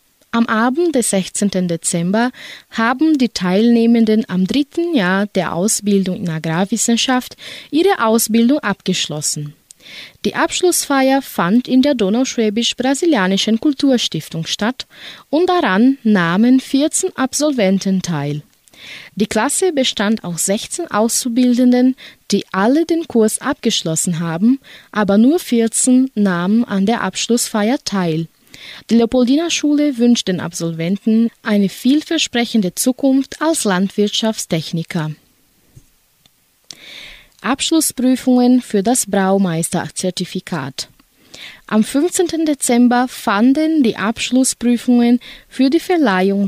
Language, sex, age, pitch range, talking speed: German, female, 20-39, 195-255 Hz, 100 wpm